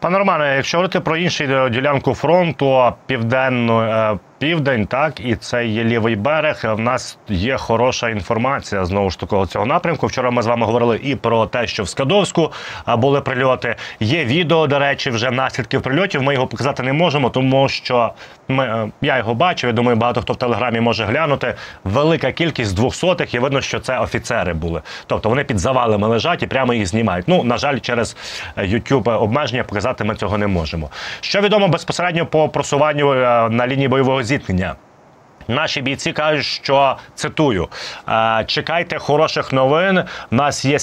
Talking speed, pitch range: 165 wpm, 115-150 Hz